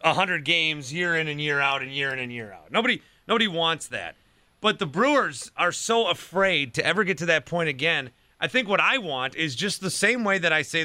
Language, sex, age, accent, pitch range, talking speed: English, male, 30-49, American, 145-195 Hz, 245 wpm